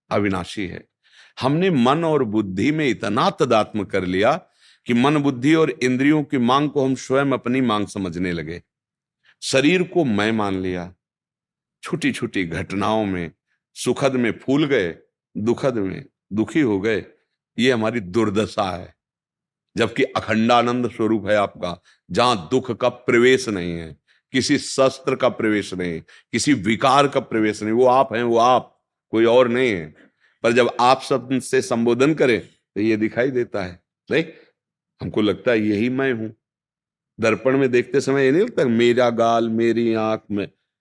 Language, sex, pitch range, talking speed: Hindi, male, 110-135 Hz, 160 wpm